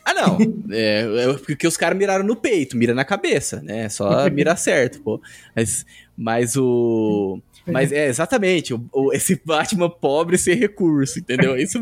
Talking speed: 165 wpm